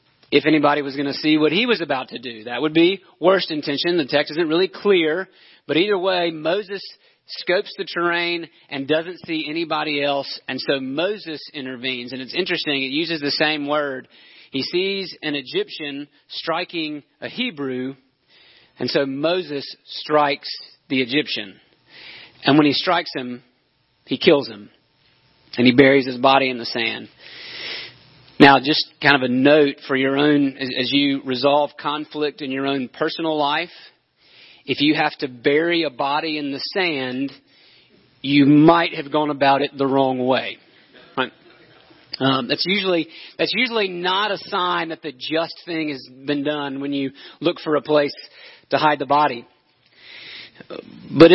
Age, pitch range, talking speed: 30-49, 140-165 Hz, 160 wpm